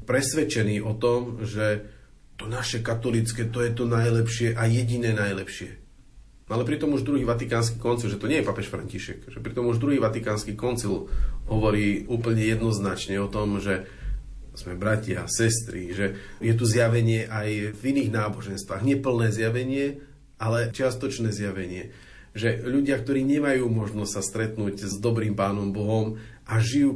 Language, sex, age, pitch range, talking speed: Slovak, male, 40-59, 100-120 Hz, 150 wpm